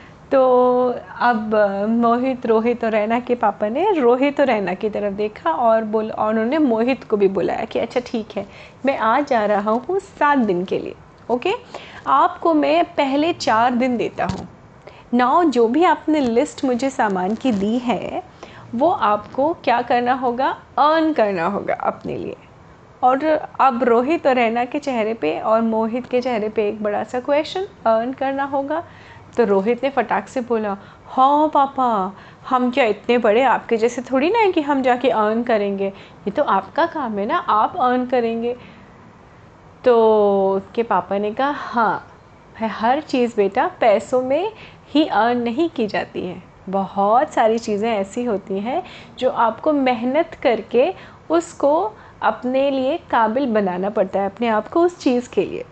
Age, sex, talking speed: 30-49, female, 170 wpm